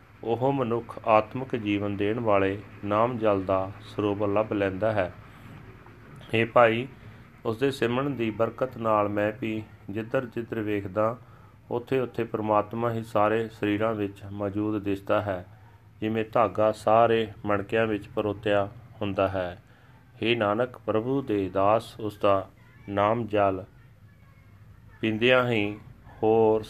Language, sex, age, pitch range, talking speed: Punjabi, male, 40-59, 105-120 Hz, 125 wpm